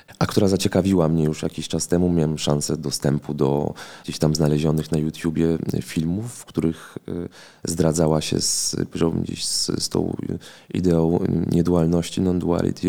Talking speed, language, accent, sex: 135 wpm, Polish, native, male